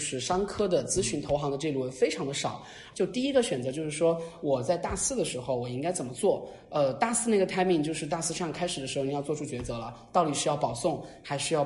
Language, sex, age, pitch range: Chinese, male, 20-39, 135-185 Hz